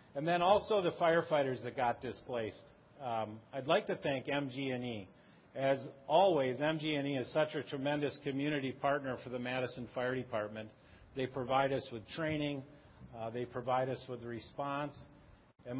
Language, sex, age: English, male, 50-69